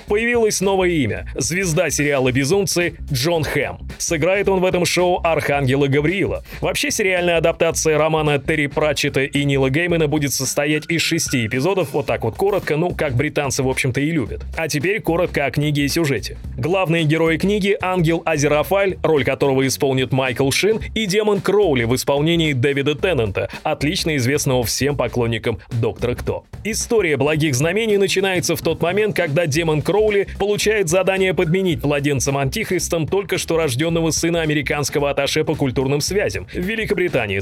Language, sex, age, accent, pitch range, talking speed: Russian, male, 30-49, native, 140-175 Hz, 155 wpm